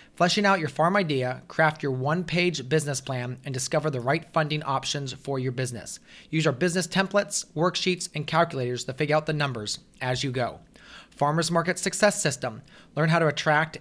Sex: male